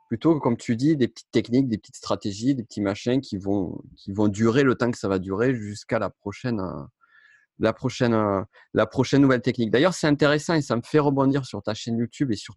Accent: French